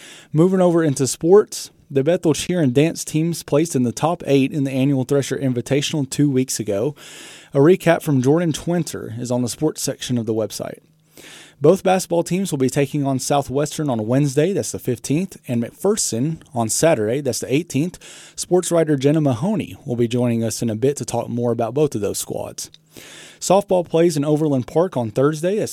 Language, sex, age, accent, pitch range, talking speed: English, male, 30-49, American, 130-160 Hz, 195 wpm